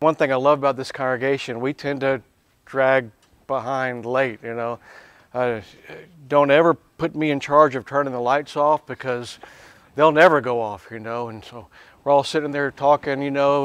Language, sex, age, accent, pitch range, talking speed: English, male, 50-69, American, 115-145 Hz, 190 wpm